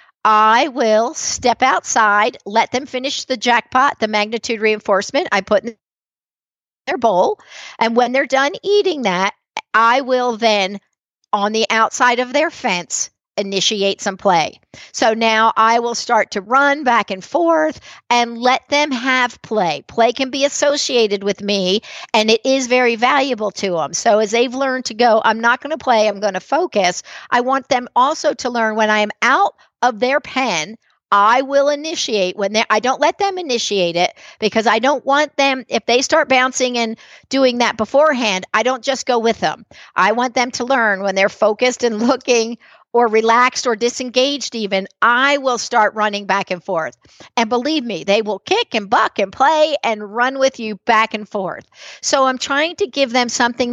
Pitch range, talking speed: 215-265 Hz, 185 wpm